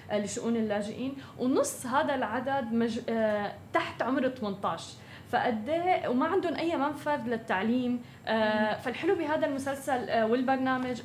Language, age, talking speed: Arabic, 10-29, 120 wpm